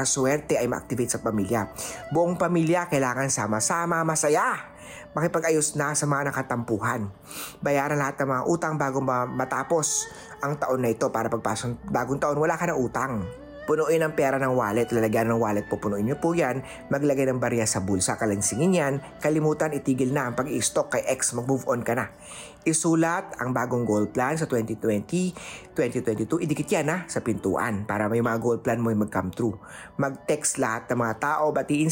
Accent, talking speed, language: native, 170 wpm, Filipino